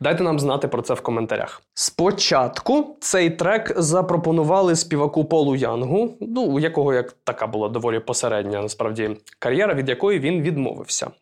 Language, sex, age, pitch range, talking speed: Ukrainian, male, 20-39, 110-145 Hz, 150 wpm